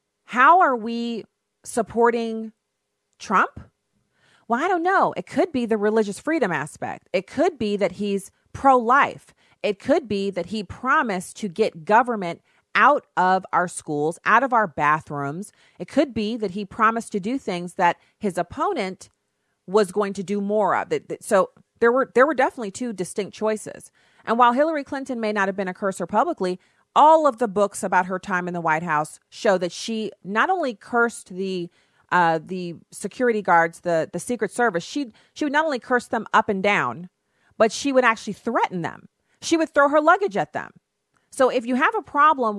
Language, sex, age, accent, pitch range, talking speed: English, female, 40-59, American, 180-240 Hz, 185 wpm